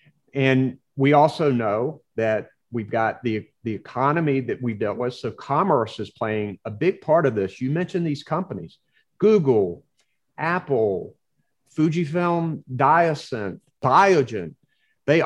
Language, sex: English, male